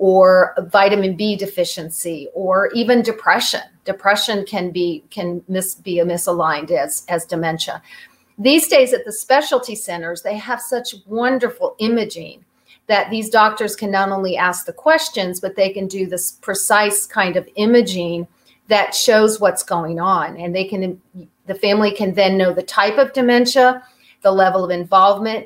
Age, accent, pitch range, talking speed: 40-59, American, 180-220 Hz, 160 wpm